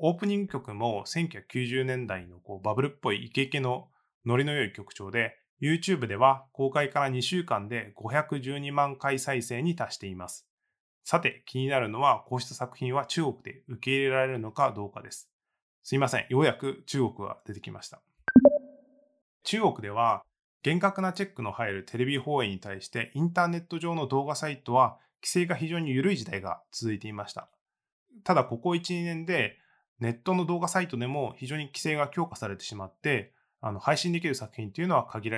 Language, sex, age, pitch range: Japanese, male, 20-39, 115-155 Hz